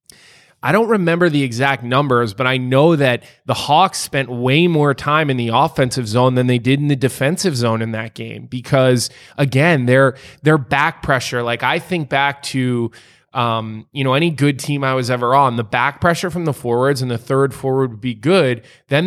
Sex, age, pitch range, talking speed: male, 20-39, 125-150 Hz, 205 wpm